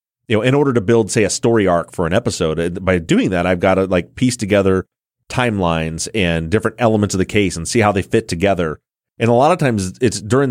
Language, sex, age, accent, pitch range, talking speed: English, male, 30-49, American, 90-120 Hz, 240 wpm